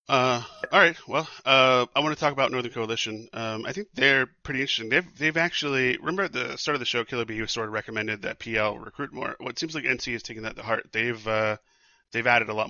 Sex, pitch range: male, 110-120 Hz